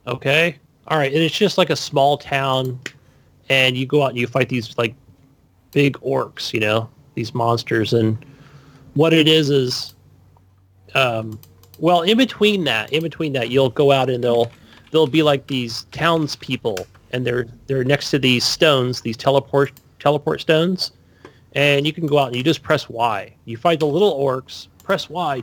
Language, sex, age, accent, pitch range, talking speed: English, male, 30-49, American, 115-145 Hz, 175 wpm